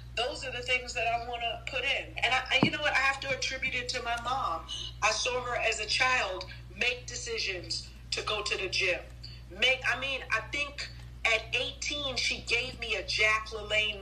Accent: American